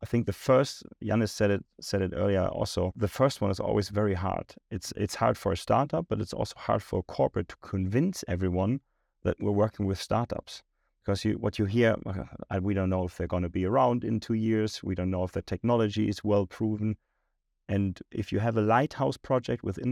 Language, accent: English, German